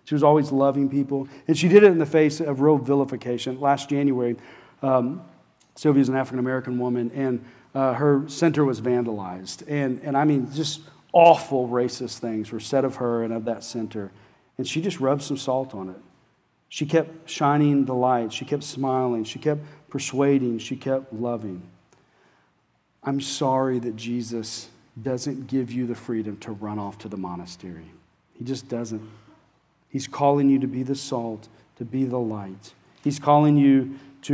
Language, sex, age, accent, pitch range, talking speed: English, male, 40-59, American, 115-140 Hz, 175 wpm